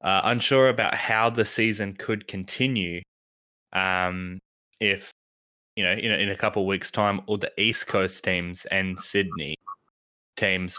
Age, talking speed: 20-39, 150 wpm